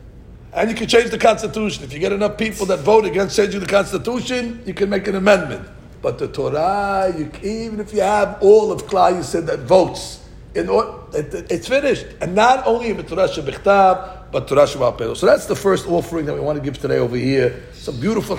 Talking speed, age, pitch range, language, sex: 215 wpm, 60-79, 140-205 Hz, English, male